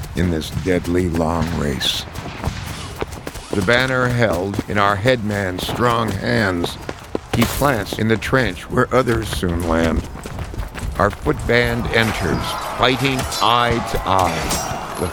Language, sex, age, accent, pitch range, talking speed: English, male, 60-79, American, 95-130 Hz, 125 wpm